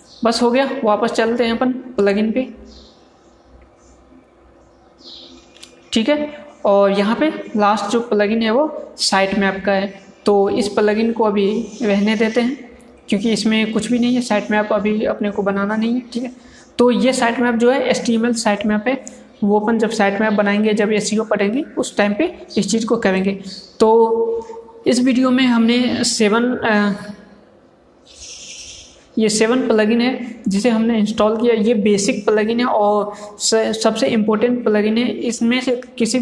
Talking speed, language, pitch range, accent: 175 wpm, Hindi, 205-240 Hz, native